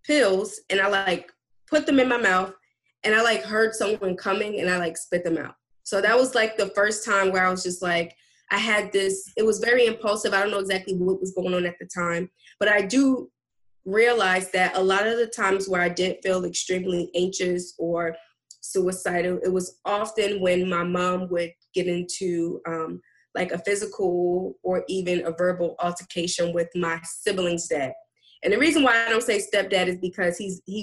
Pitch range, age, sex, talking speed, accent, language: 175-205 Hz, 20-39, female, 200 wpm, American, English